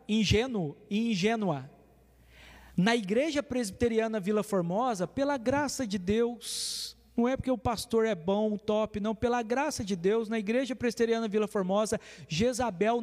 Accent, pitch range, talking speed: Brazilian, 200-245 Hz, 145 wpm